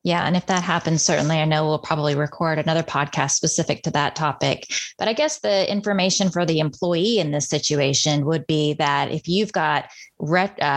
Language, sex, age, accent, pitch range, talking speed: English, female, 20-39, American, 150-175 Hz, 195 wpm